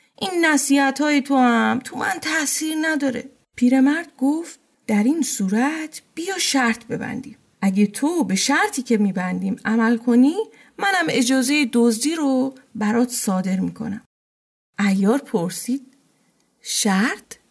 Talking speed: 115 wpm